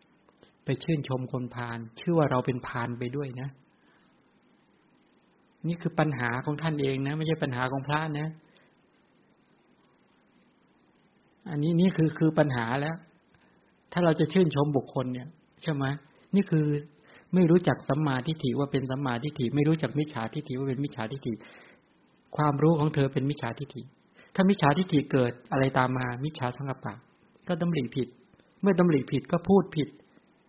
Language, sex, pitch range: English, male, 130-165 Hz